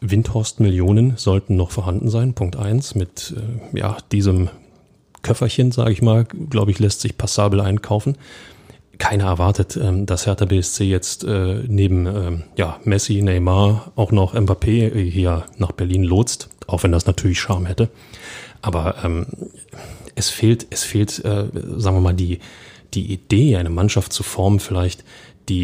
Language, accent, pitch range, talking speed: German, German, 95-115 Hz, 145 wpm